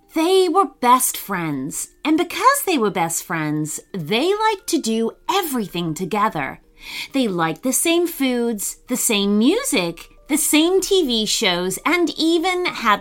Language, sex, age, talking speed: English, female, 30-49, 145 wpm